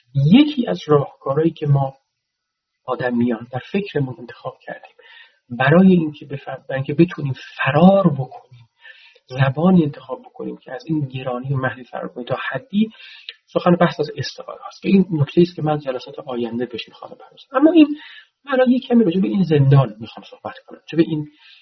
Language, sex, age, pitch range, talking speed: Persian, male, 40-59, 130-185 Hz, 170 wpm